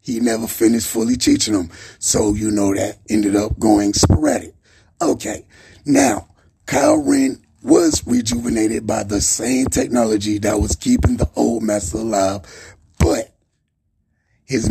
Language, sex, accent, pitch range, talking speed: Czech, male, American, 100-125 Hz, 135 wpm